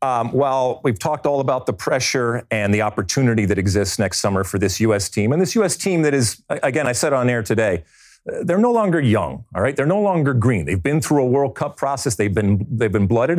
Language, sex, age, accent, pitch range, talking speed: English, male, 40-59, American, 110-155 Hz, 240 wpm